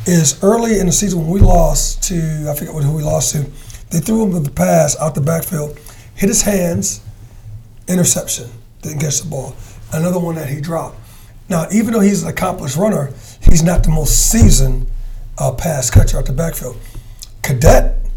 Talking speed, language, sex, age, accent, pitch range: 185 wpm, English, male, 40-59, American, 125-185 Hz